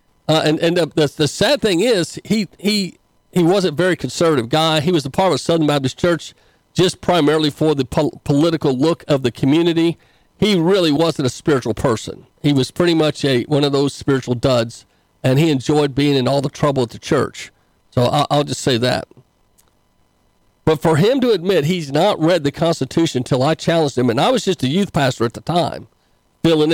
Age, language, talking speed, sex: 50-69, English, 210 wpm, male